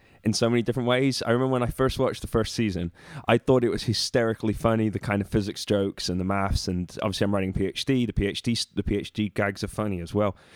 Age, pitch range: 20-39, 100-120 Hz